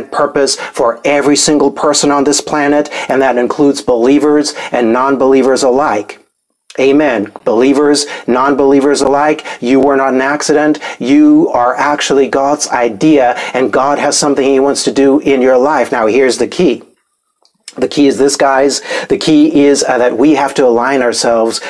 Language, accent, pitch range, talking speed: English, American, 130-145 Hz, 165 wpm